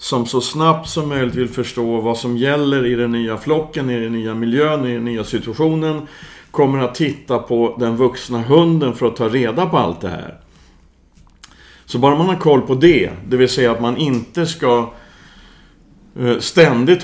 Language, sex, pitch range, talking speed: Swedish, male, 110-140 Hz, 185 wpm